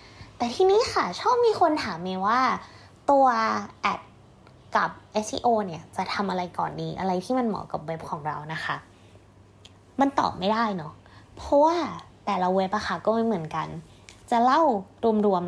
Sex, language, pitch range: female, Thai, 185-275 Hz